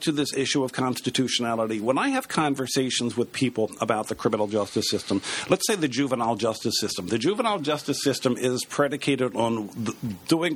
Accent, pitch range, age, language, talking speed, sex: American, 120-145 Hz, 50-69, English, 175 wpm, male